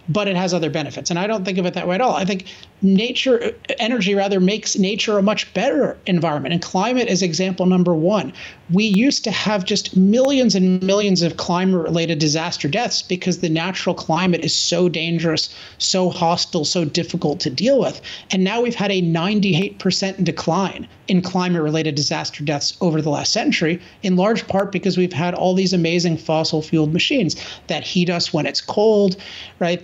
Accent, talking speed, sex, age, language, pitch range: American, 185 wpm, male, 40-59, English, 170-200 Hz